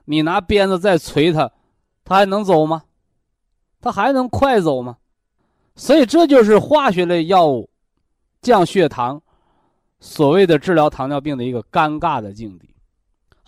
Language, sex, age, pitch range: Chinese, male, 20-39, 140-210 Hz